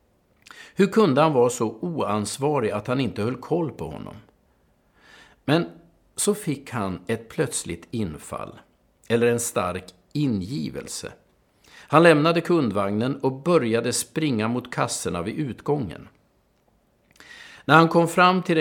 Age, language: 50-69, Swedish